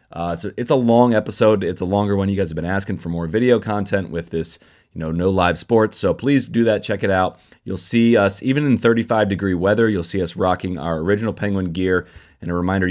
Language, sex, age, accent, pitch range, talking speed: English, male, 30-49, American, 85-110 Hz, 245 wpm